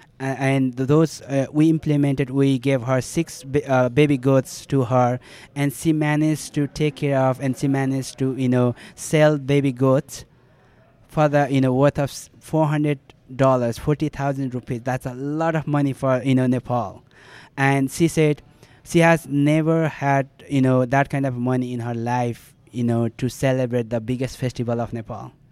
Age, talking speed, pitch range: 20-39, 180 wpm, 125-145 Hz